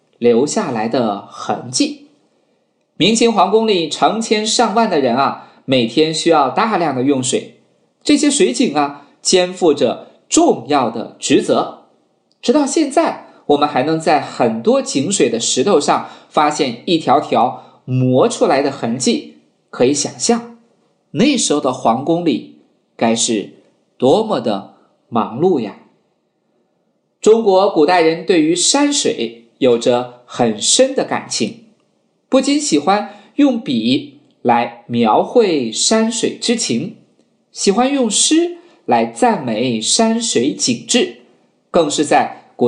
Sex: male